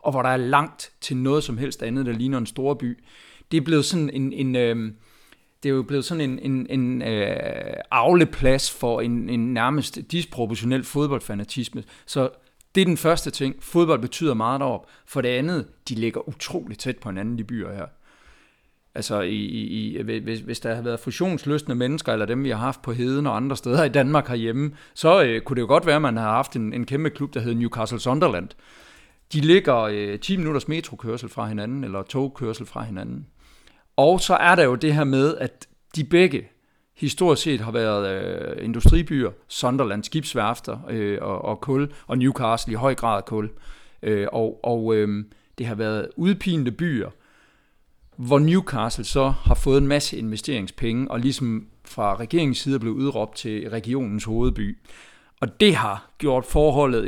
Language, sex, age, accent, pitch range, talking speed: Danish, male, 40-59, native, 115-145 Hz, 185 wpm